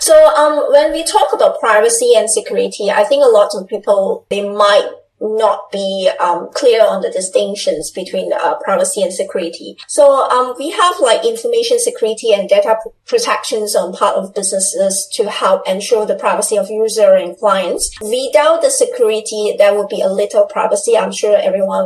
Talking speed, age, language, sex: 175 wpm, 20-39, English, female